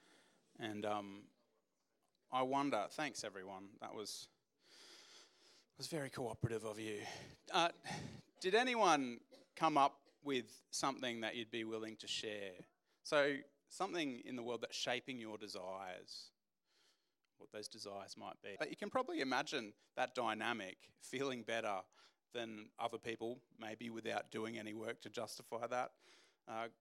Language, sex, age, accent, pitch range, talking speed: English, male, 30-49, Australian, 110-140 Hz, 135 wpm